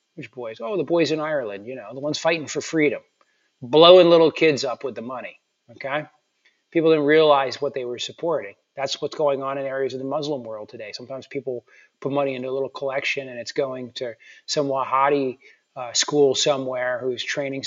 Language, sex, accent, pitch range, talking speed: English, male, American, 130-160 Hz, 200 wpm